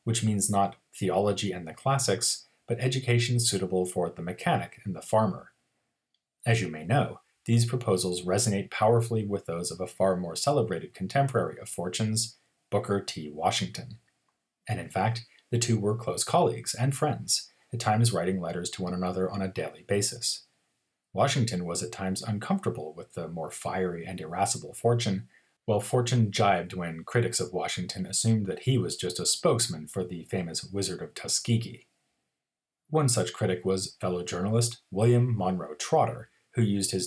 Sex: male